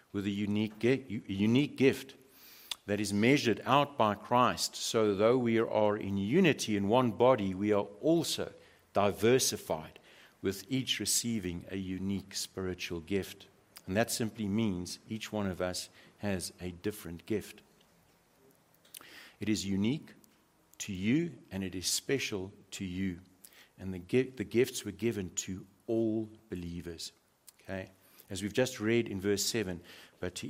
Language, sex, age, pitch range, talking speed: English, male, 50-69, 95-115 Hz, 145 wpm